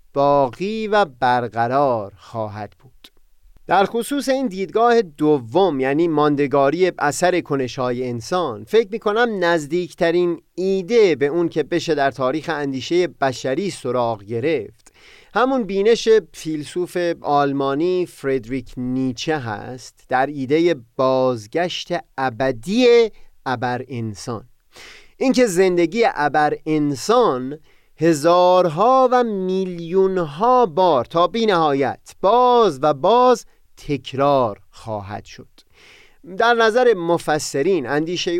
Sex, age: male, 30-49